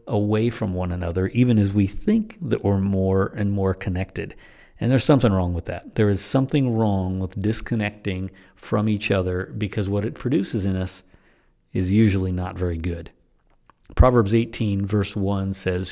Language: English